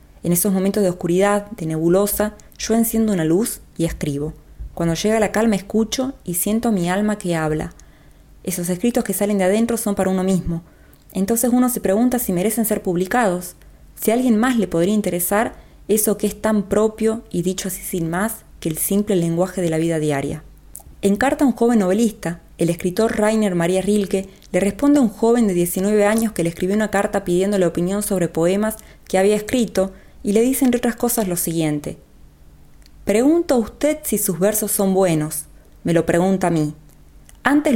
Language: Spanish